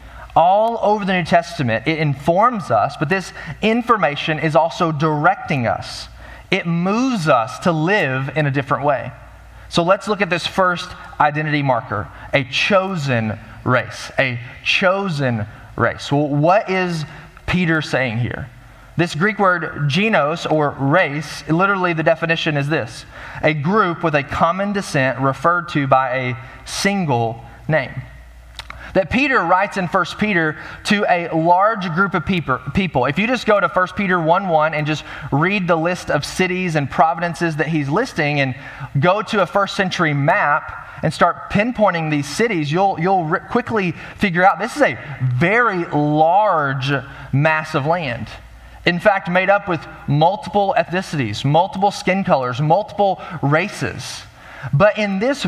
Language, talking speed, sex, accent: English, 150 wpm, male, American